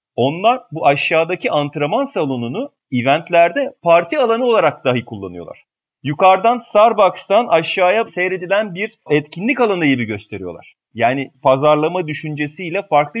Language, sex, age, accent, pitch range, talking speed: Turkish, male, 40-59, native, 140-190 Hz, 110 wpm